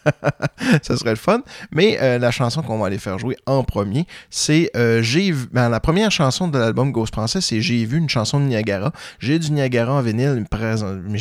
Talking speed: 215 wpm